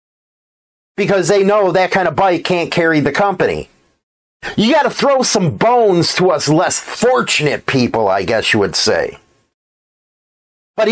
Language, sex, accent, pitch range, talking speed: English, male, American, 165-220 Hz, 150 wpm